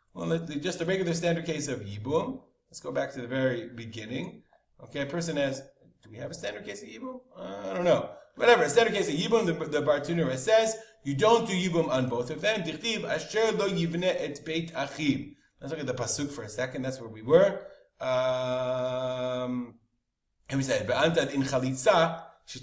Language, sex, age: English, male, 30-49